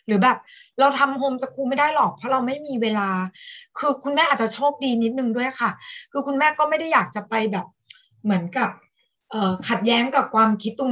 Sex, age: female, 20-39